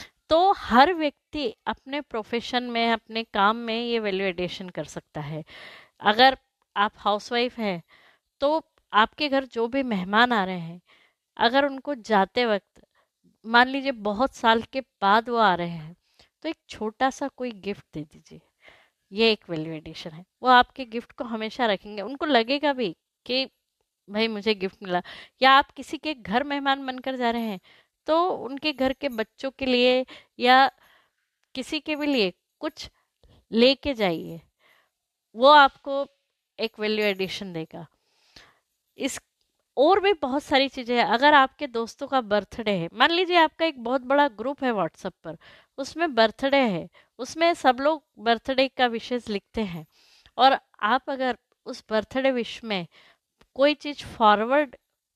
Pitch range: 210-275 Hz